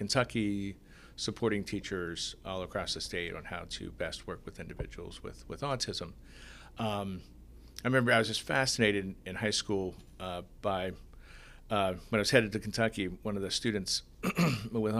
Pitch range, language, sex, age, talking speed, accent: 90-115 Hz, English, male, 50-69, 170 wpm, American